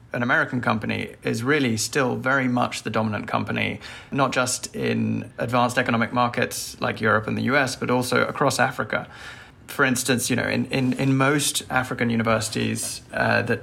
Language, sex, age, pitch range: English, male, 20-39, 115-135 Hz